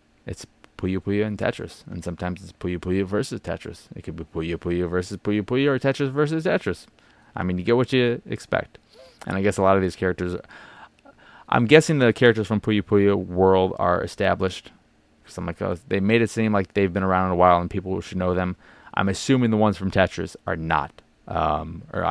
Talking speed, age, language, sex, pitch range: 210 wpm, 20-39, English, male, 90-110 Hz